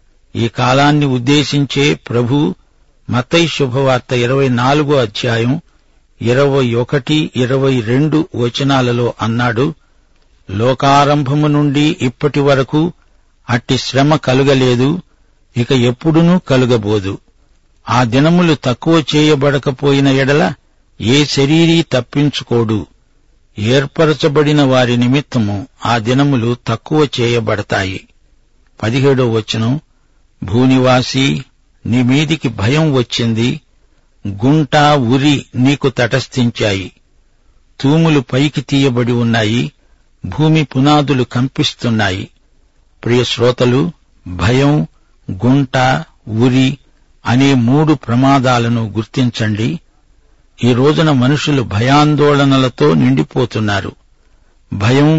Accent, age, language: native, 60-79, Telugu